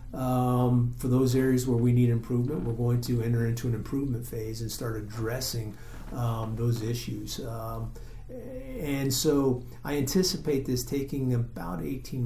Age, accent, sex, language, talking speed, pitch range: 40-59, American, male, English, 150 wpm, 115-130 Hz